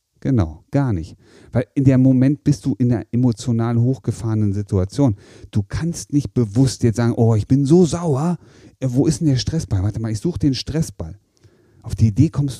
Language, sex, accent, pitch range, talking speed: German, male, German, 105-135 Hz, 195 wpm